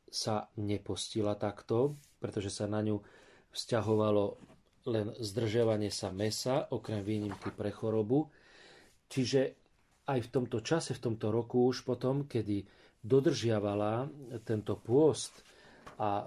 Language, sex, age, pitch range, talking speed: Slovak, male, 40-59, 105-120 Hz, 115 wpm